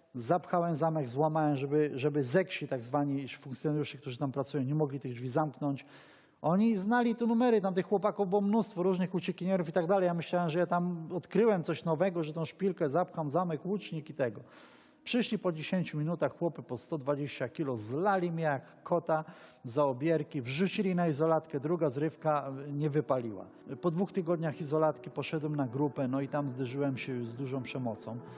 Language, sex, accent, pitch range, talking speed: Polish, male, native, 145-180 Hz, 175 wpm